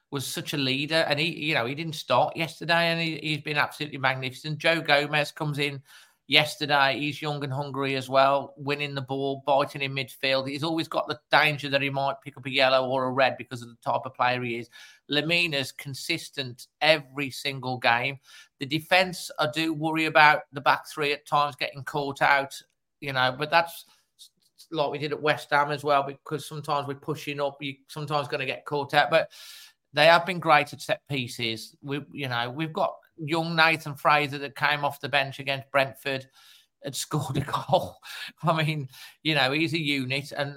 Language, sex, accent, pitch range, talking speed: English, male, British, 135-155 Hz, 200 wpm